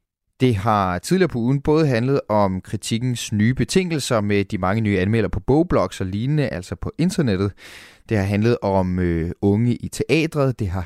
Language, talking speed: Danish, 175 wpm